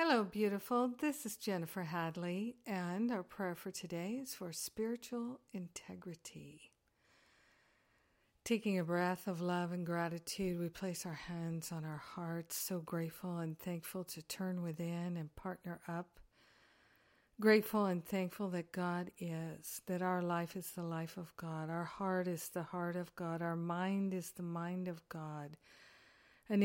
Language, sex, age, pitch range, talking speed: English, female, 50-69, 170-190 Hz, 155 wpm